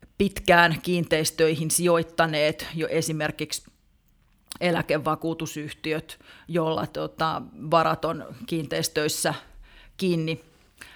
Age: 30-49